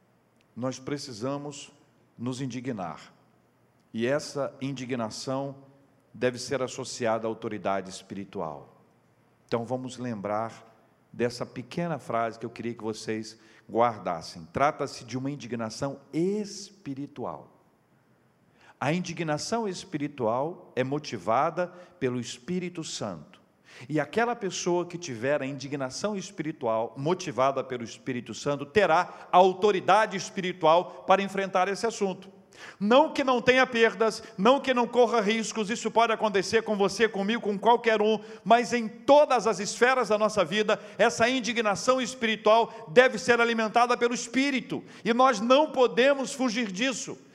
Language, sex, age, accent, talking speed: Portuguese, male, 50-69, Brazilian, 125 wpm